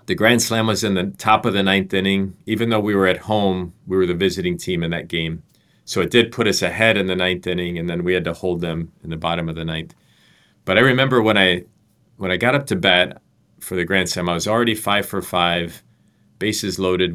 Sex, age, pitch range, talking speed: male, 40-59, 85-105 Hz, 250 wpm